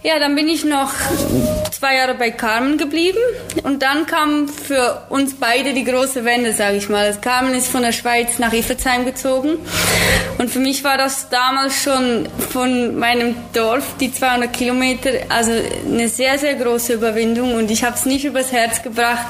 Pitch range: 225-260 Hz